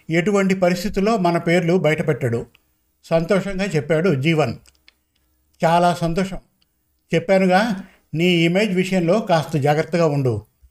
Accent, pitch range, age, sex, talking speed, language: native, 155-190 Hz, 50-69, male, 95 wpm, Telugu